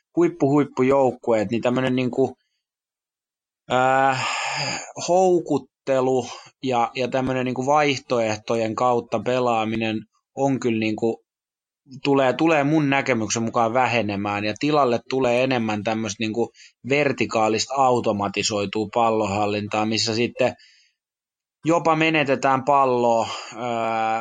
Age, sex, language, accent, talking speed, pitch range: 20-39, male, Finnish, native, 90 wpm, 110-125 Hz